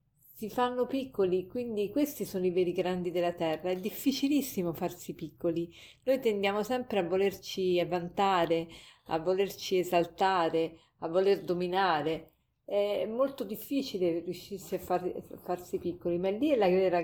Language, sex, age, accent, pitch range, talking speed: Italian, female, 40-59, native, 170-205 Hz, 150 wpm